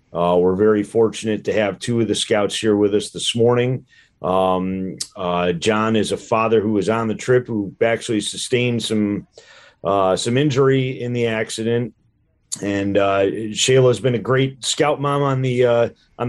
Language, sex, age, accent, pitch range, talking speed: English, male, 40-59, American, 100-120 Hz, 175 wpm